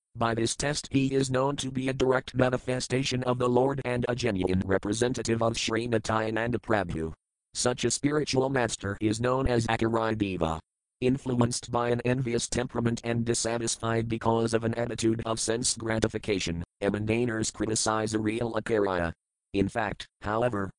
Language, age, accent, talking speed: English, 50-69, American, 155 wpm